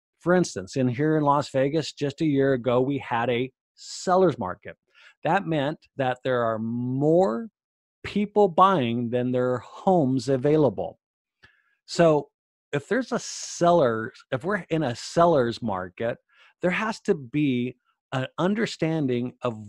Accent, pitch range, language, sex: American, 125-165 Hz, English, male